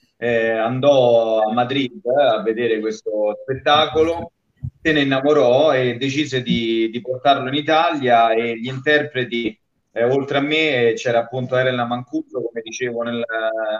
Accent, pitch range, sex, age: native, 115-140 Hz, male, 30-49